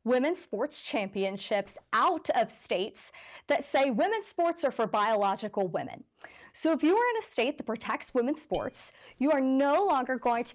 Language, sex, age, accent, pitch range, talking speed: English, female, 20-39, American, 210-310 Hz, 175 wpm